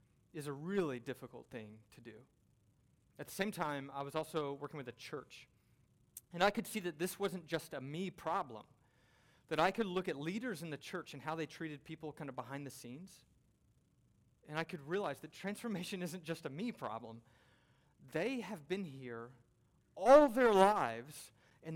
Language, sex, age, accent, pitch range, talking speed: English, male, 30-49, American, 135-180 Hz, 185 wpm